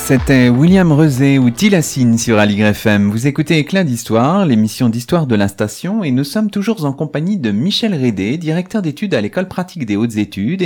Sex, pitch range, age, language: male, 110-175 Hz, 30-49, French